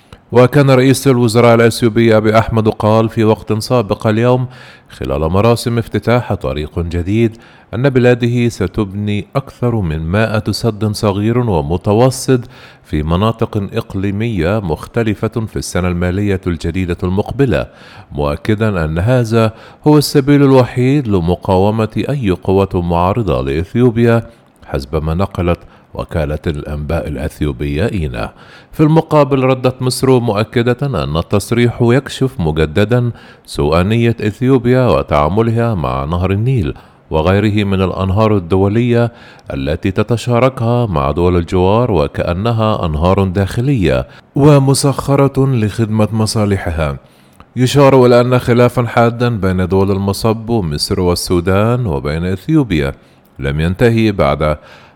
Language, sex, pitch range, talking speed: Arabic, male, 90-120 Hz, 105 wpm